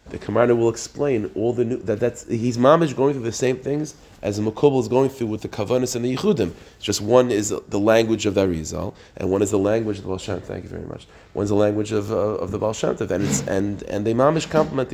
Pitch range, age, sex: 95-120 Hz, 30-49, male